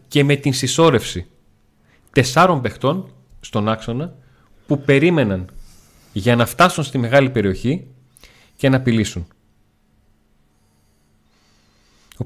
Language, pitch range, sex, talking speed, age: Greek, 105-140 Hz, male, 100 wpm, 30-49